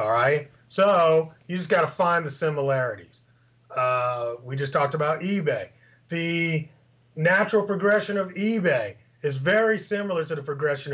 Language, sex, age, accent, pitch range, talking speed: English, male, 30-49, American, 150-220 Hz, 150 wpm